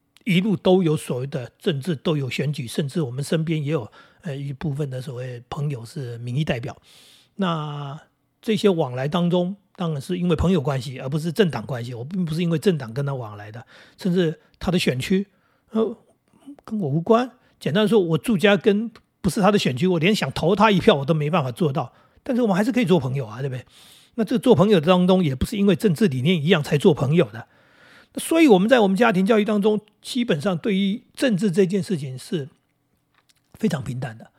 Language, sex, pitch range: Chinese, male, 145-205 Hz